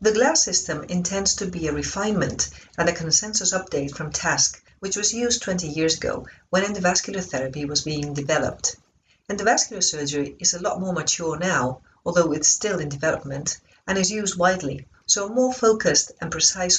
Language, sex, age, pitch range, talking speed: English, female, 40-59, 155-210 Hz, 175 wpm